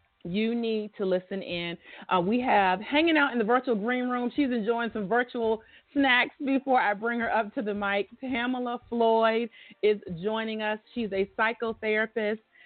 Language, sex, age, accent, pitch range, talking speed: English, female, 40-59, American, 195-235 Hz, 170 wpm